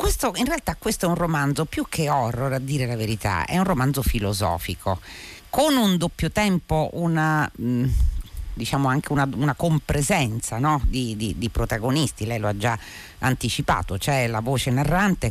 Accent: native